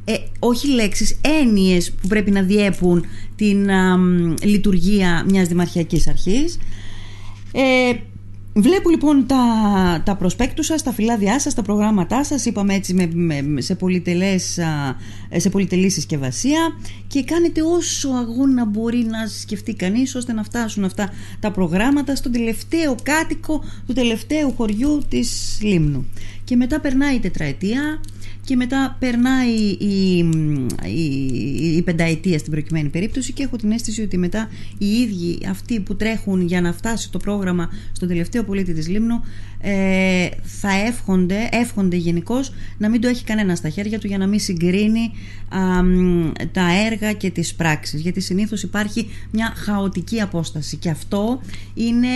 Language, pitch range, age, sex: Greek, 170-230 Hz, 30-49, female